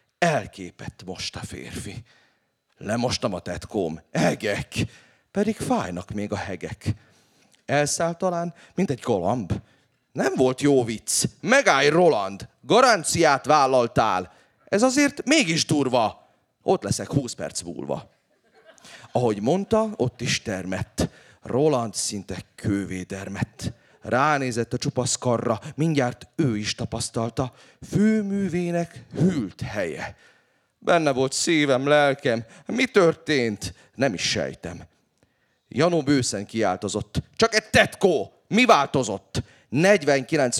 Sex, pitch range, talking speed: male, 105-165 Hz, 105 wpm